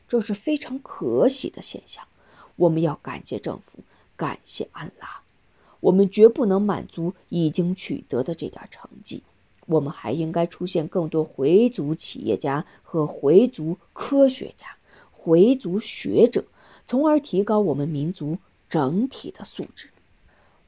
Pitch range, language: 160-215 Hz, Chinese